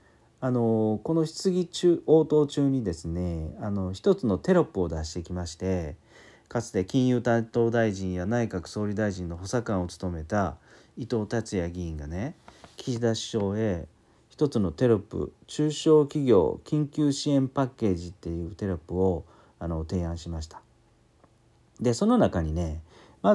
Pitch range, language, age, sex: 90-135 Hz, Japanese, 40-59, male